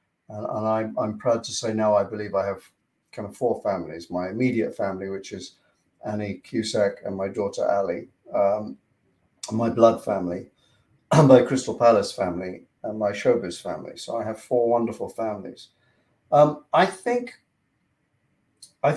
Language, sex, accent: English, male, British